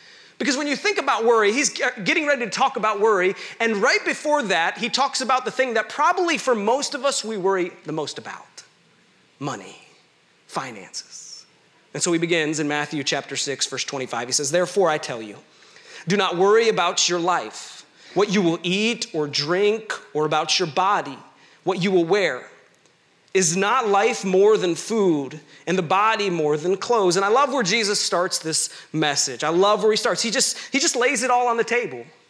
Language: English